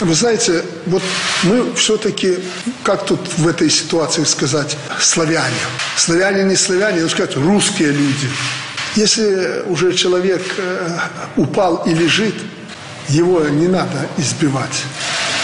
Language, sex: Russian, male